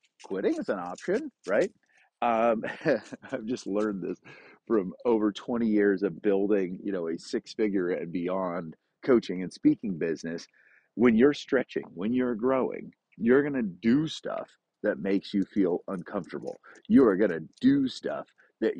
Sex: male